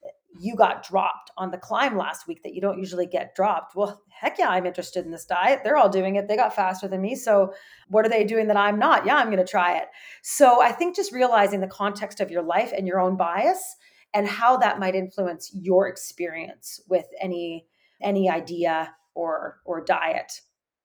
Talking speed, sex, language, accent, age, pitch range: 210 wpm, female, English, American, 30-49, 190-275 Hz